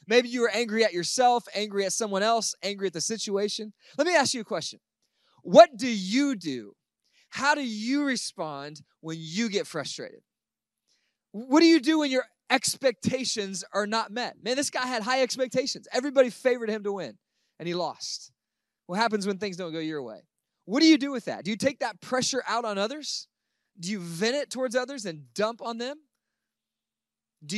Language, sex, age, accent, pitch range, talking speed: English, male, 20-39, American, 185-245 Hz, 195 wpm